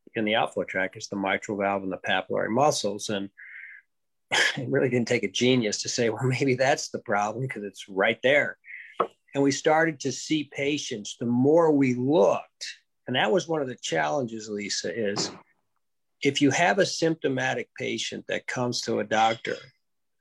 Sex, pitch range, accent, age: male, 110-135 Hz, American, 50-69